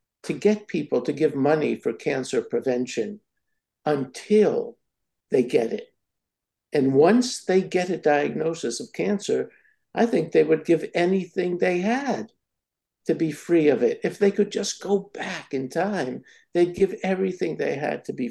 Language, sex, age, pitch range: English, male, 60-79, 155-250 Hz